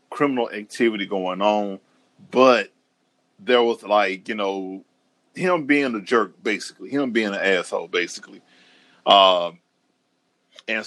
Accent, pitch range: American, 100-120 Hz